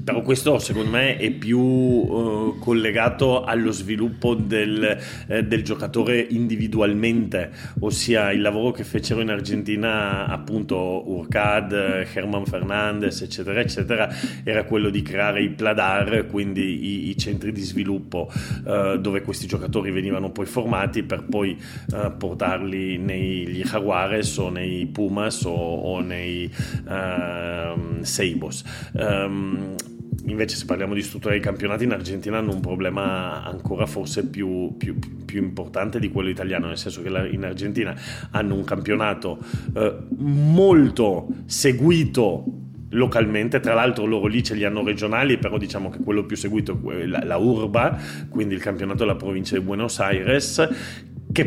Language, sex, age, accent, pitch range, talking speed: Italian, male, 30-49, native, 95-120 Hz, 140 wpm